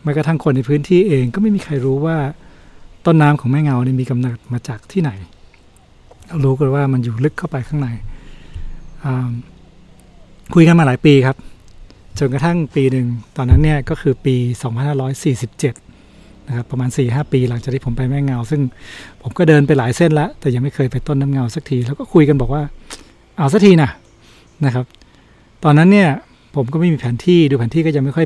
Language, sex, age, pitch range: Thai, male, 60-79, 120-150 Hz